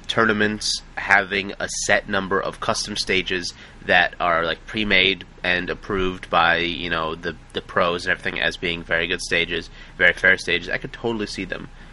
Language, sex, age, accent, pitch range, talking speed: English, male, 30-49, American, 90-115 Hz, 175 wpm